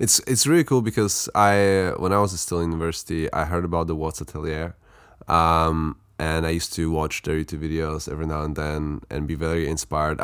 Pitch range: 80-95 Hz